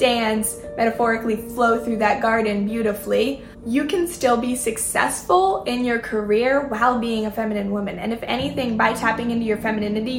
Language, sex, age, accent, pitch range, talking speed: English, female, 10-29, American, 210-245 Hz, 160 wpm